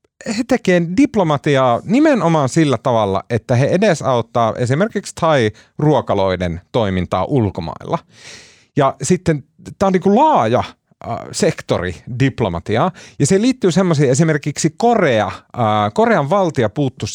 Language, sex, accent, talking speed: Finnish, male, native, 105 wpm